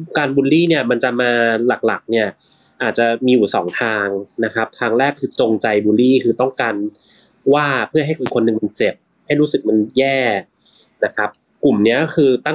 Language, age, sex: Thai, 20-39, male